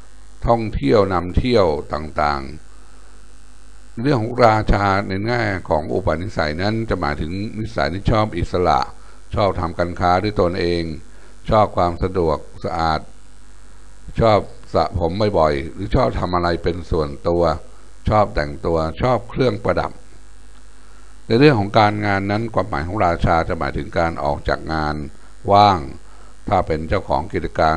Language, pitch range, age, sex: Thai, 85-105 Hz, 60-79, male